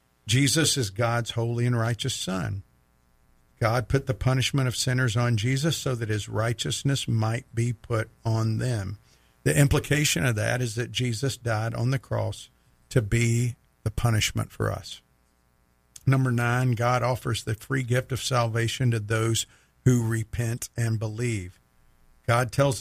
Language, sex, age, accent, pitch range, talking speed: English, male, 50-69, American, 110-130 Hz, 155 wpm